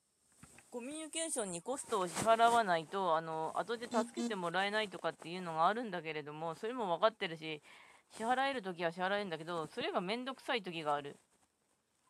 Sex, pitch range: female, 155-220 Hz